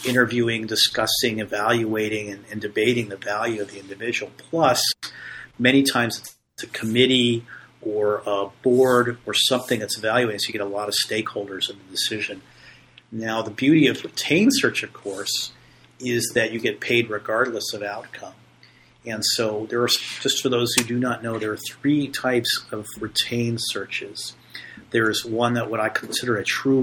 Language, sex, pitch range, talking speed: English, male, 110-125 Hz, 170 wpm